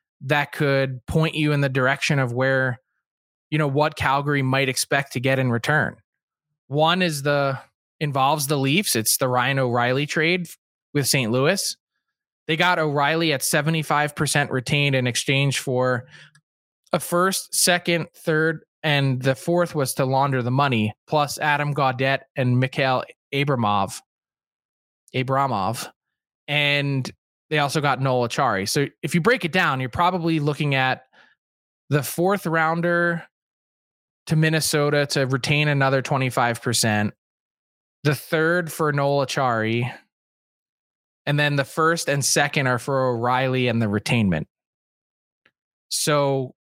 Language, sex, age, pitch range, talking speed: English, male, 20-39, 130-160 Hz, 135 wpm